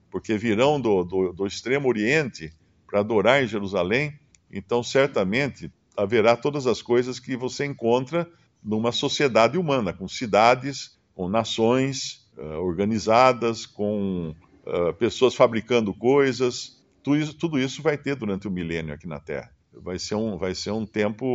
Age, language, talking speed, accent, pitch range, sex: 50-69, Portuguese, 150 wpm, Brazilian, 105-145 Hz, male